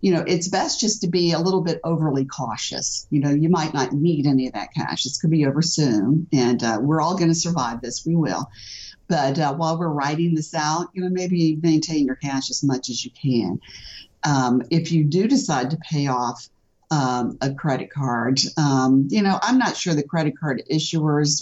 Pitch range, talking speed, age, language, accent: 130-165 Hz, 215 wpm, 50-69, English, American